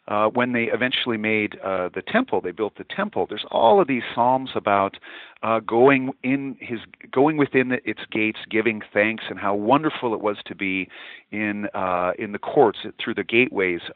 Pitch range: 100-125 Hz